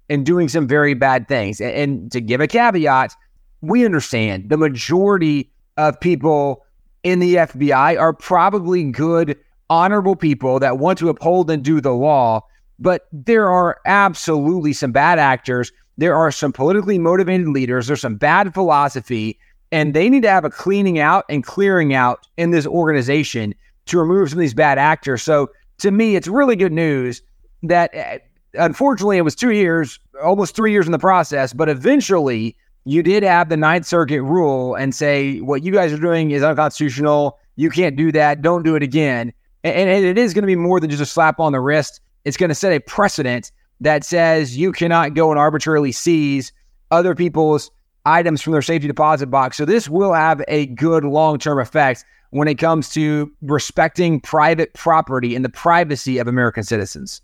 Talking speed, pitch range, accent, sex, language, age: 185 wpm, 140-175 Hz, American, male, English, 30-49